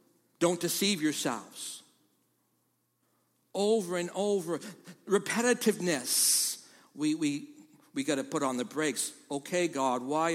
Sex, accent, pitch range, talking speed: male, American, 185-235 Hz, 110 wpm